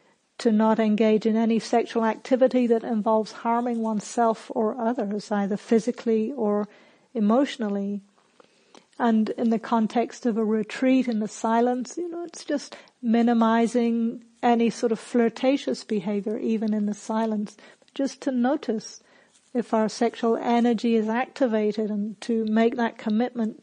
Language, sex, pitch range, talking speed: English, female, 220-245 Hz, 140 wpm